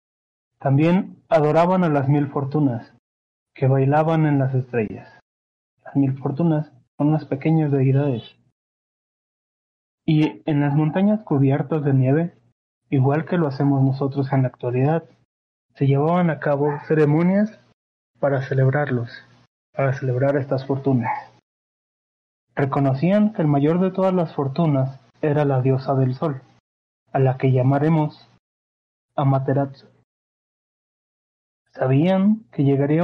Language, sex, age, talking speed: Spanish, male, 30-49, 120 wpm